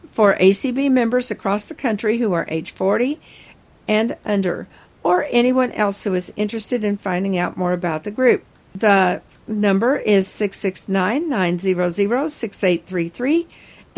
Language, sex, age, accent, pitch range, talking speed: English, female, 50-69, American, 185-230 Hz, 125 wpm